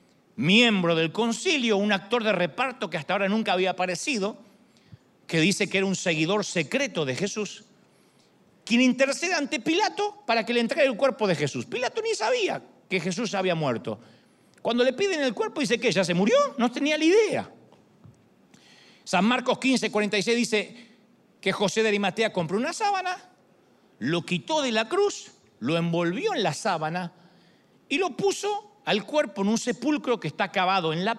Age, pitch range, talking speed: 40-59, 185-250 Hz, 175 wpm